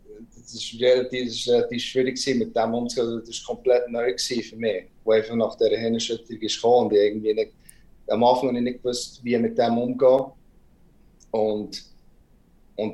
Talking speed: 135 wpm